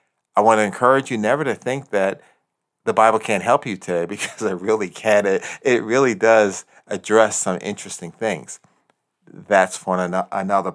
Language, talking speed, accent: English, 160 wpm, American